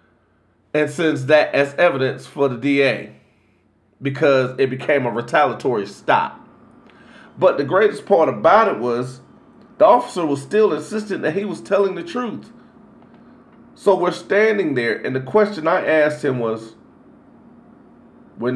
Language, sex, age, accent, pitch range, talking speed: English, male, 40-59, American, 125-180 Hz, 140 wpm